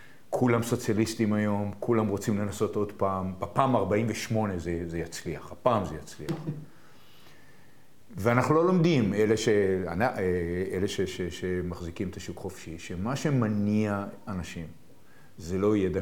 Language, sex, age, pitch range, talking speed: Hebrew, male, 50-69, 90-115 Hz, 130 wpm